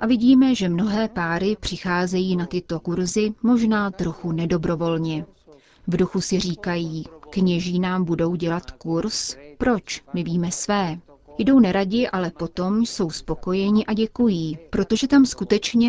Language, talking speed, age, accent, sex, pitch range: Czech, 135 wpm, 30-49, native, female, 170-210 Hz